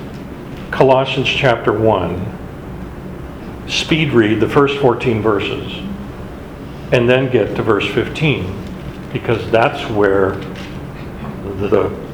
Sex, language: male, English